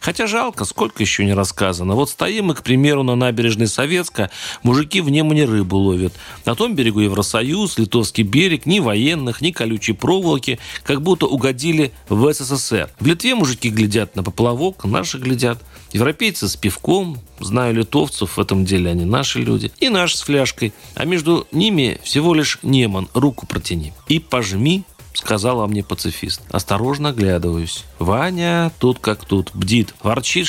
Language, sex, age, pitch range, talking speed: Russian, male, 40-59, 100-145 Hz, 155 wpm